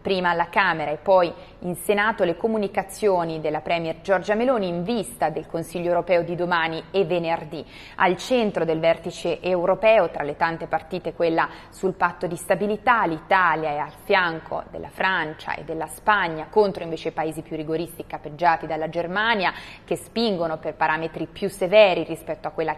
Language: Italian